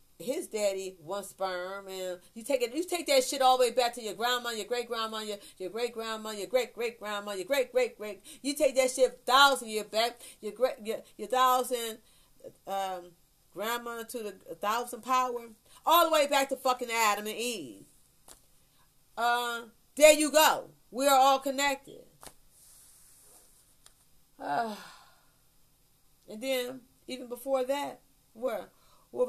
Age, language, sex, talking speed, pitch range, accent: 40-59, English, female, 160 wpm, 170-245 Hz, American